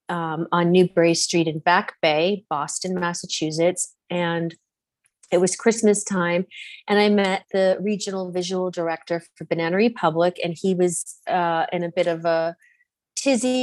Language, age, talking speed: English, 30-49, 150 wpm